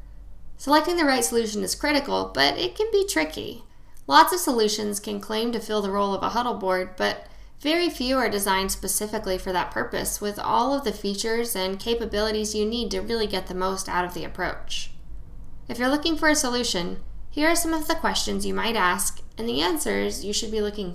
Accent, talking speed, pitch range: American, 210 wpm, 190-255 Hz